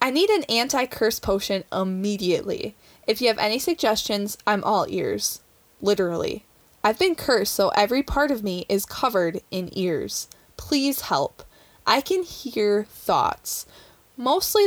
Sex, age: female, 20-39